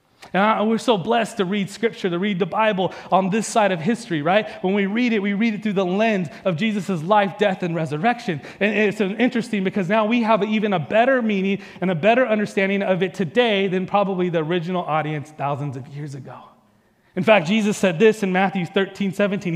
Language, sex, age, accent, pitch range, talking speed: English, male, 30-49, American, 170-220 Hz, 210 wpm